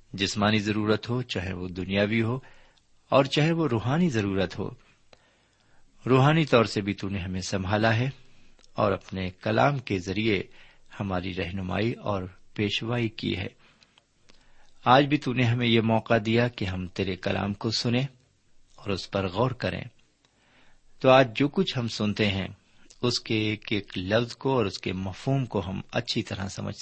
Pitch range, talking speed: 95-125 Hz, 165 wpm